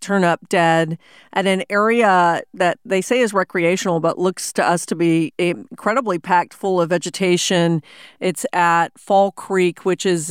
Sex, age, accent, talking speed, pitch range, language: female, 40-59, American, 165 wpm, 170-200 Hz, English